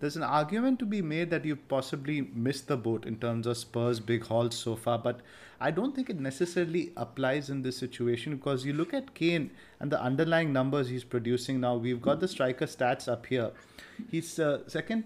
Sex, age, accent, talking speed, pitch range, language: male, 30-49, Indian, 205 wpm, 125-160 Hz, English